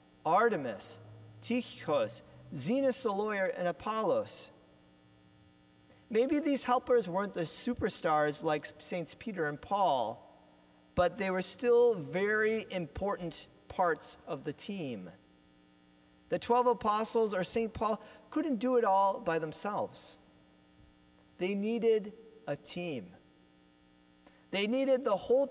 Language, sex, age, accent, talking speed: English, male, 40-59, American, 115 wpm